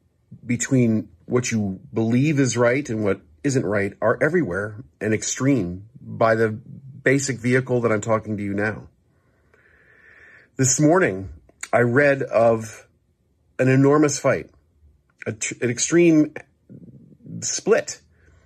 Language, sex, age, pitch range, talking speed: English, male, 40-59, 95-130 Hz, 115 wpm